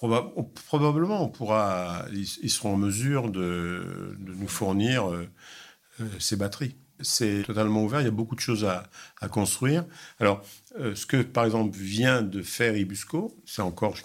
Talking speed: 170 wpm